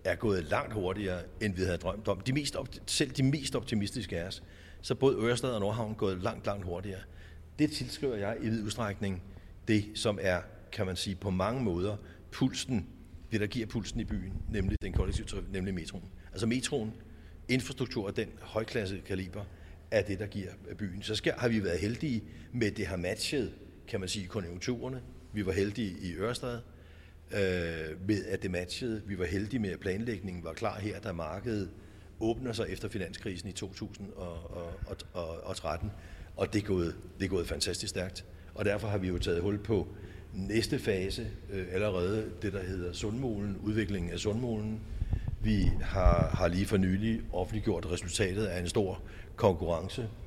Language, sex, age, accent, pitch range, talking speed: Danish, male, 60-79, native, 90-110 Hz, 175 wpm